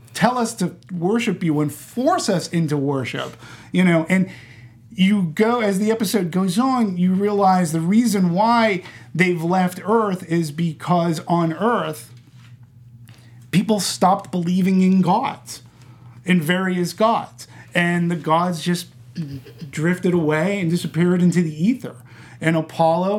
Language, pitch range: English, 145-180 Hz